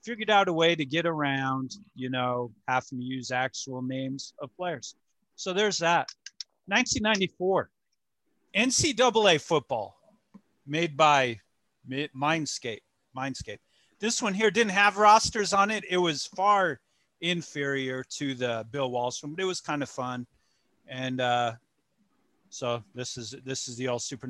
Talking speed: 145 wpm